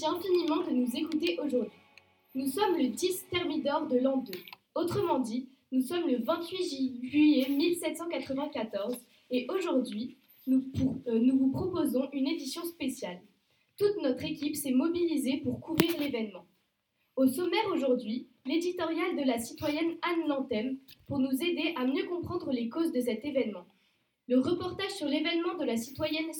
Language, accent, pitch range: French, French, 250-320 Hz